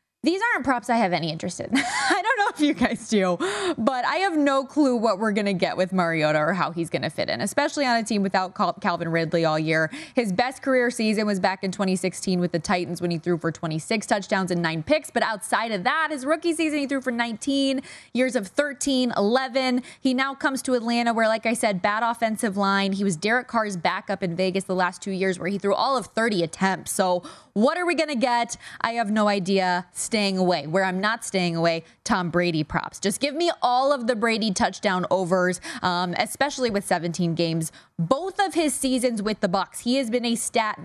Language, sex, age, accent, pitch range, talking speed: English, female, 20-39, American, 185-255 Hz, 230 wpm